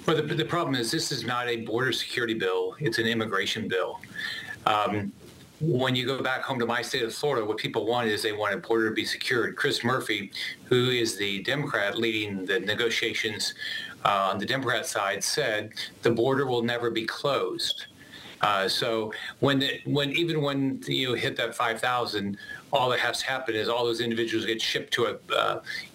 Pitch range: 115-145 Hz